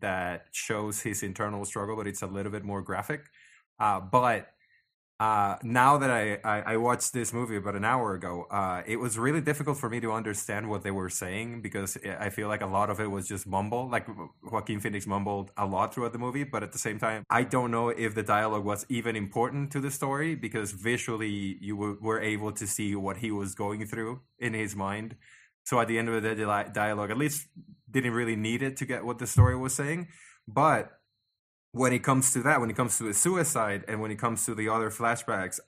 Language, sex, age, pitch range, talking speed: English, male, 20-39, 100-120 Hz, 220 wpm